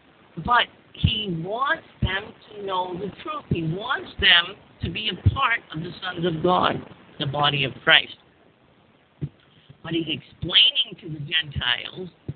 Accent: American